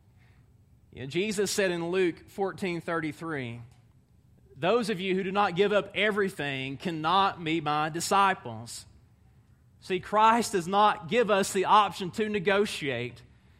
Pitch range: 155-235 Hz